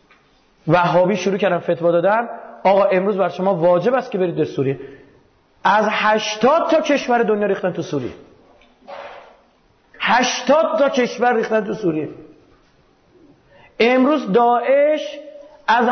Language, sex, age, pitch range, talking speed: Persian, male, 30-49, 185-240 Hz, 120 wpm